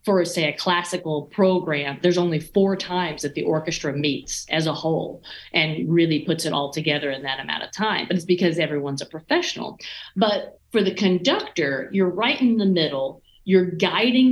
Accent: American